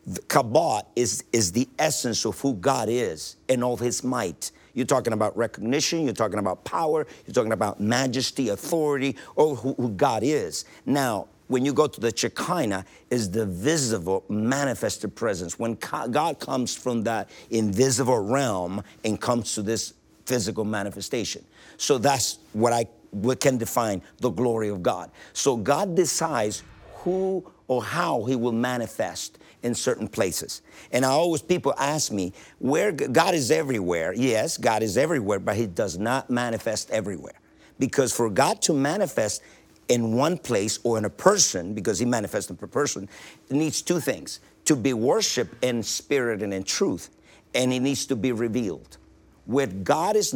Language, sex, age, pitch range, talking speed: English, male, 50-69, 110-135 Hz, 165 wpm